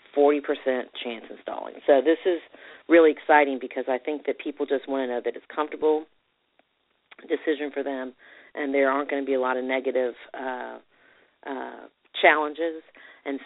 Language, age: English, 40-59